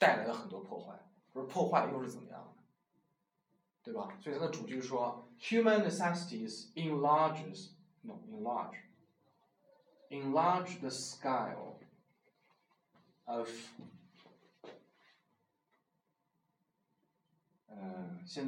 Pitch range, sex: 135-210 Hz, male